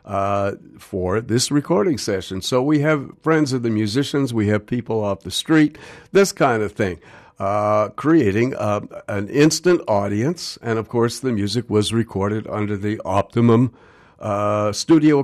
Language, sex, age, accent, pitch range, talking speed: English, male, 60-79, American, 100-130 Hz, 155 wpm